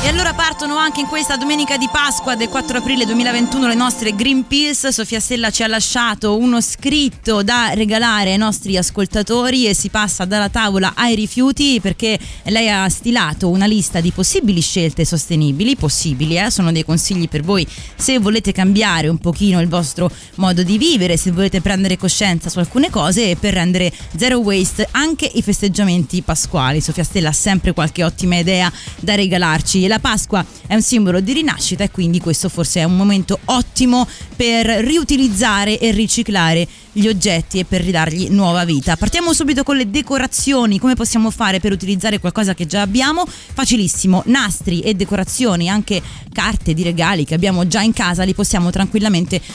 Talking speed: 175 wpm